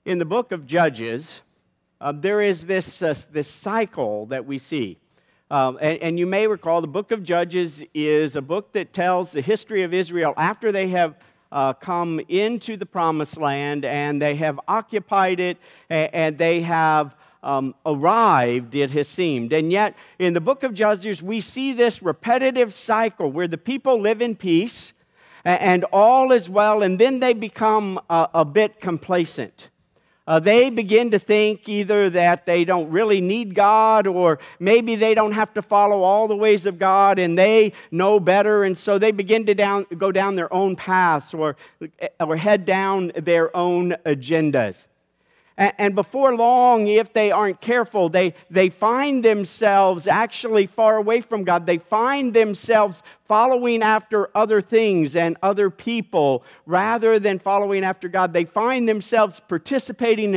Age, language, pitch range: 50-69, English, 170-215 Hz